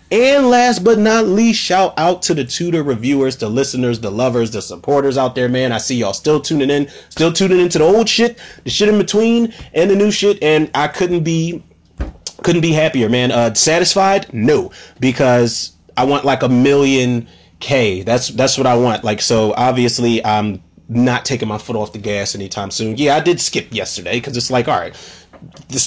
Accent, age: American, 30-49